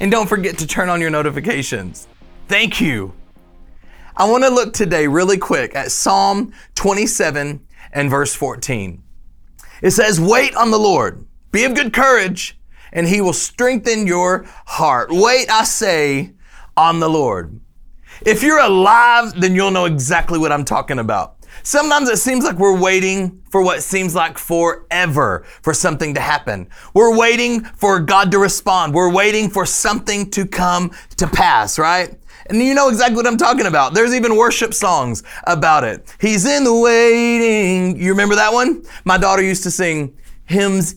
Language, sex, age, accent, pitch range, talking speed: English, male, 30-49, American, 165-225 Hz, 165 wpm